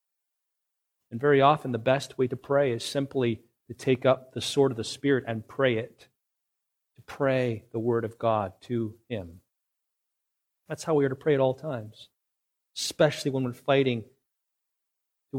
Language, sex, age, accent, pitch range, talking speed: English, male, 40-59, American, 130-210 Hz, 170 wpm